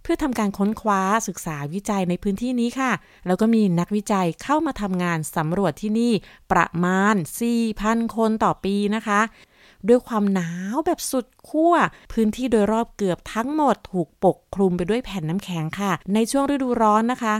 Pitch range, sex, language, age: 180-235 Hz, female, Thai, 20-39